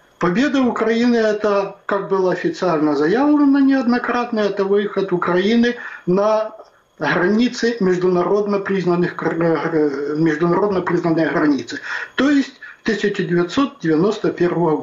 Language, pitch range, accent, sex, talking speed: Ukrainian, 175-235 Hz, native, male, 80 wpm